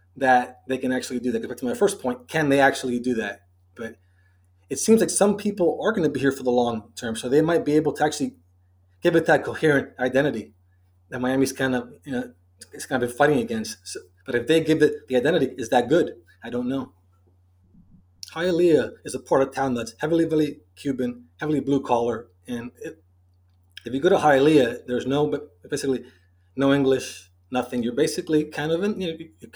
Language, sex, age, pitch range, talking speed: English, male, 30-49, 110-145 Hz, 210 wpm